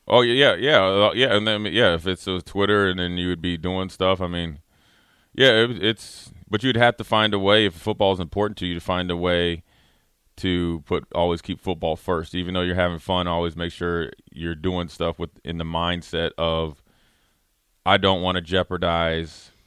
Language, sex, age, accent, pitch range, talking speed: English, male, 30-49, American, 85-100 Hz, 200 wpm